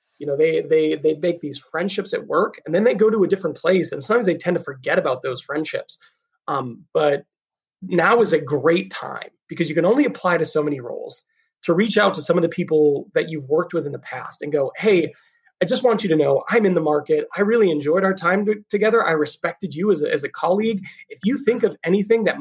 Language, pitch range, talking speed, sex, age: English, 165-225 Hz, 245 wpm, male, 30-49